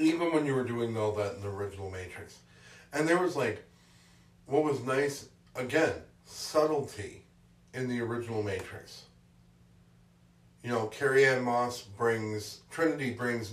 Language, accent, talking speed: English, American, 140 wpm